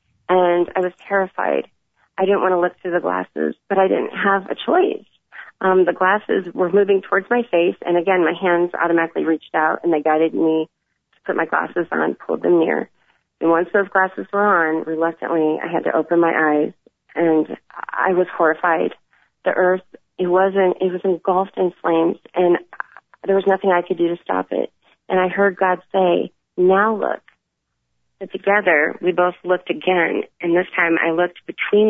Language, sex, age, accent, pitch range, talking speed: English, female, 30-49, American, 175-215 Hz, 190 wpm